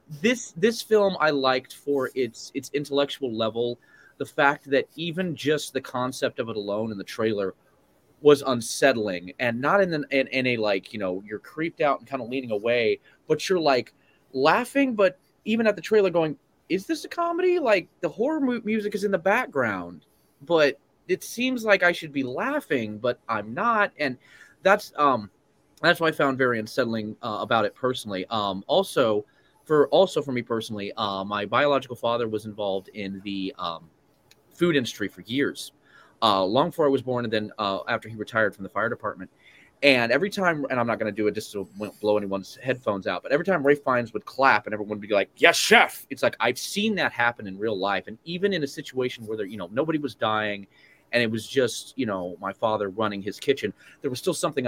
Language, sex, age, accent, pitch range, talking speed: English, male, 20-39, American, 105-165 Hz, 210 wpm